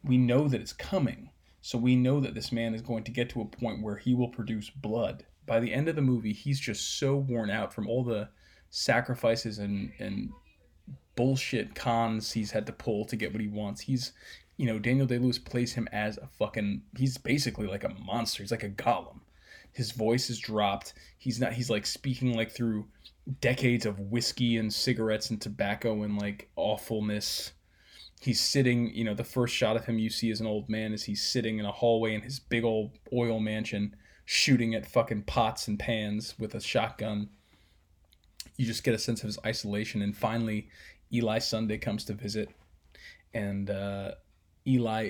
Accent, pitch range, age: American, 105-120 Hz, 20-39